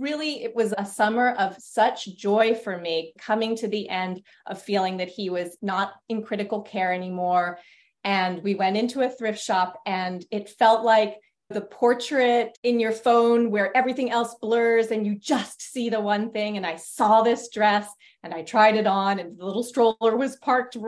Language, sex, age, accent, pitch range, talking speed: English, female, 30-49, American, 200-240 Hz, 195 wpm